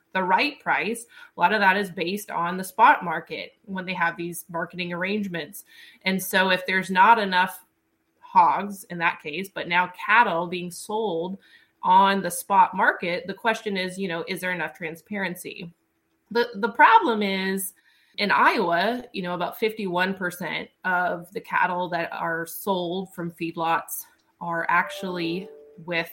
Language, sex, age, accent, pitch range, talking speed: English, female, 20-39, American, 175-215 Hz, 160 wpm